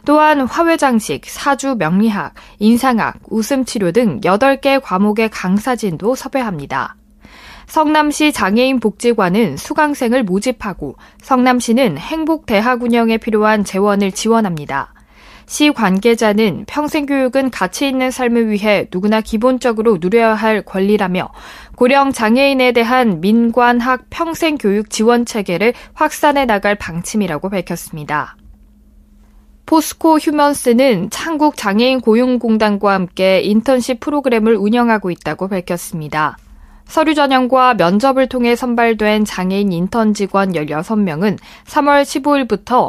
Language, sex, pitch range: Korean, female, 200-260 Hz